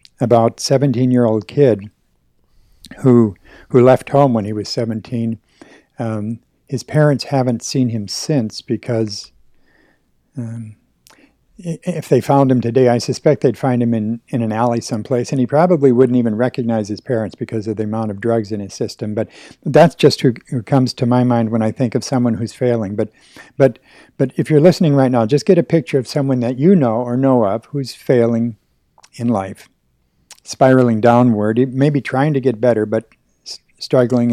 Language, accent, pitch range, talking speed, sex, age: English, American, 115-135 Hz, 175 wpm, male, 60-79